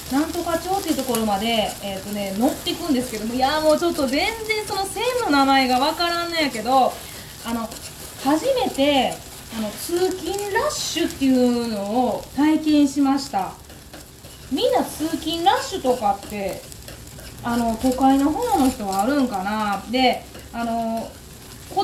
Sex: female